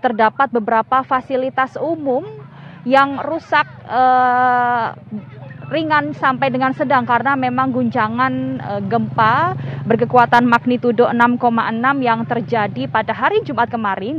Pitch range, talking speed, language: 230-270 Hz, 100 wpm, Indonesian